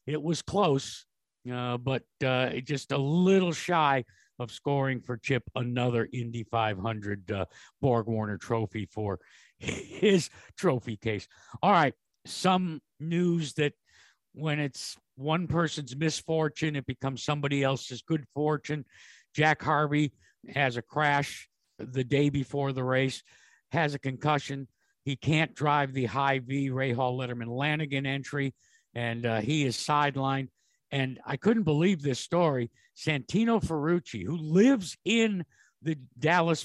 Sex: male